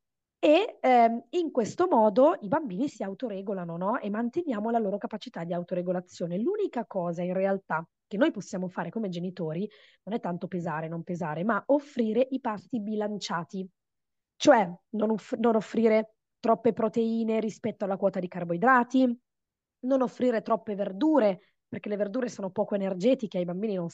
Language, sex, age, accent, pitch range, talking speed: Italian, female, 20-39, native, 180-240 Hz, 160 wpm